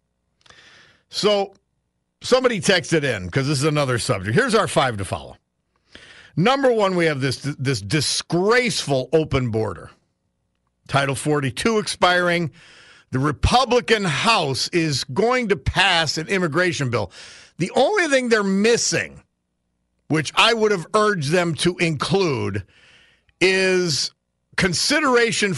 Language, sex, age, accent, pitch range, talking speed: English, male, 50-69, American, 125-200 Hz, 120 wpm